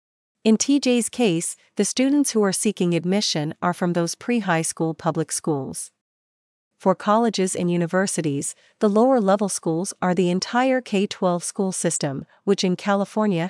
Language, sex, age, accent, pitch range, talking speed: English, female, 40-59, American, 170-200 Hz, 140 wpm